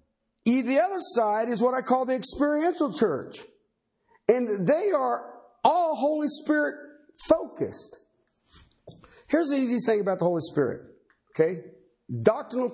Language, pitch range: English, 150-230 Hz